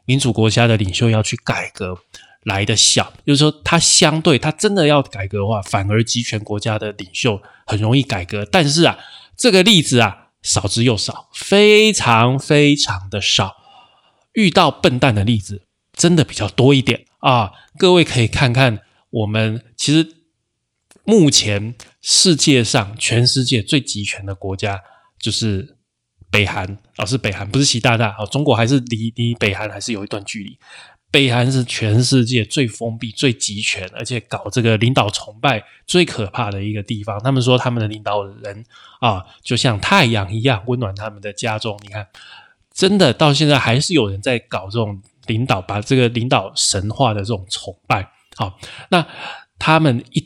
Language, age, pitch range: Chinese, 20-39, 105-135 Hz